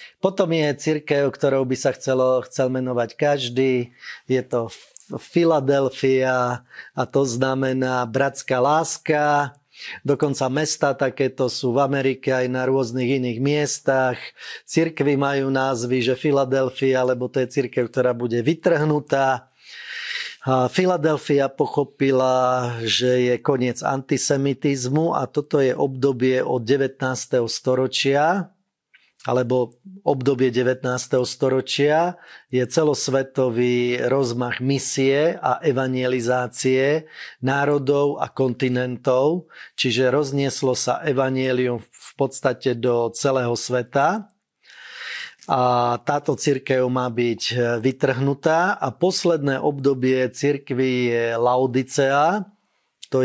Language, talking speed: Slovak, 100 wpm